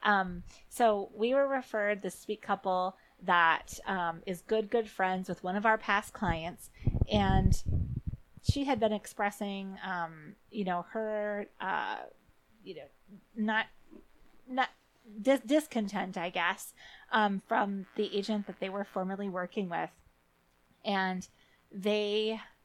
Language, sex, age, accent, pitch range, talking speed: English, female, 30-49, American, 185-215 Hz, 130 wpm